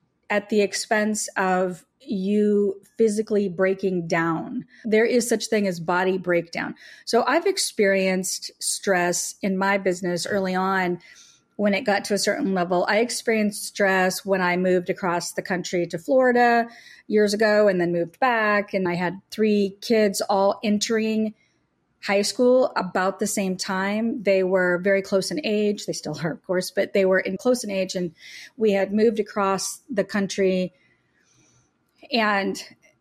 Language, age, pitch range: English, 30-49, 185-215 Hz